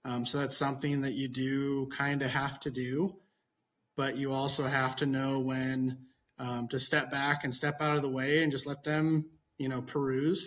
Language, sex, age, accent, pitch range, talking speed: English, male, 30-49, American, 125-150 Hz, 205 wpm